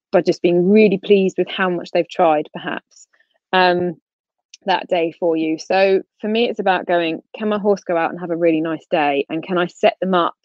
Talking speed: 225 wpm